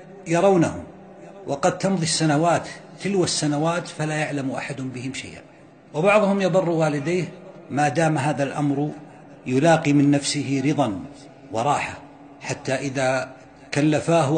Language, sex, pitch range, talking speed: Arabic, male, 135-170 Hz, 110 wpm